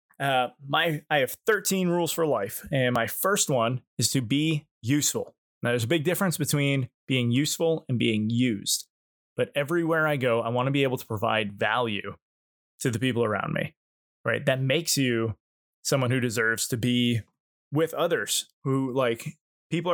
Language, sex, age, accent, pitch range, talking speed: English, male, 20-39, American, 115-145 Hz, 175 wpm